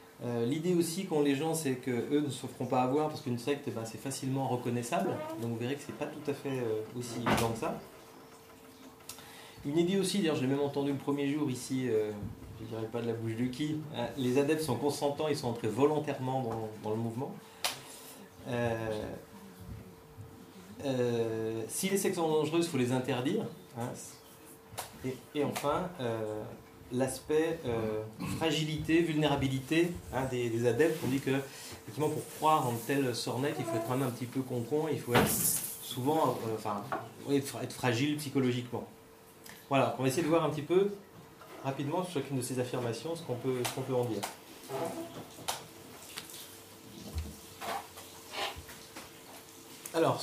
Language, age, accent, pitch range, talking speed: French, 30-49, French, 120-150 Hz, 170 wpm